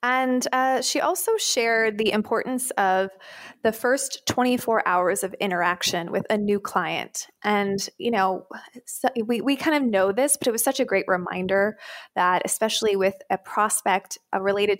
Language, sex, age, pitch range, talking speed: English, female, 20-39, 185-230 Hz, 170 wpm